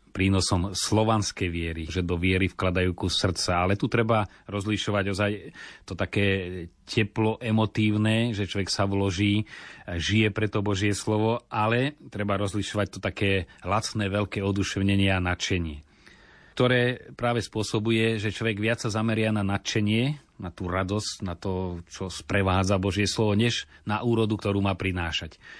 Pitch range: 95-110 Hz